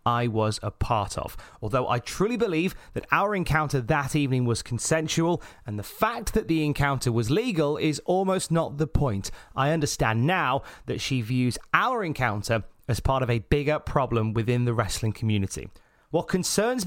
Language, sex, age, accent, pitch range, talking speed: English, male, 30-49, British, 110-155 Hz, 175 wpm